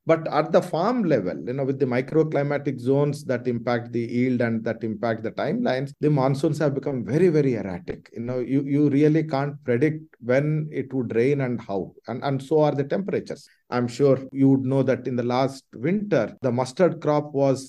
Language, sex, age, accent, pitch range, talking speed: English, male, 50-69, Indian, 120-150 Hz, 205 wpm